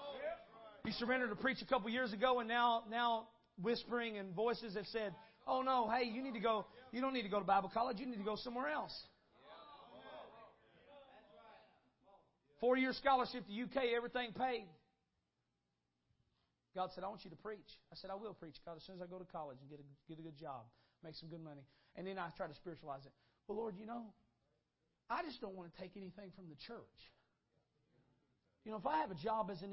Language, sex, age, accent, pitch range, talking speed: English, male, 40-59, American, 185-260 Hz, 210 wpm